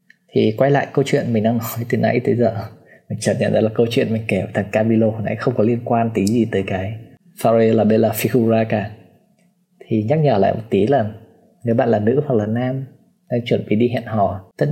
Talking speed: 245 wpm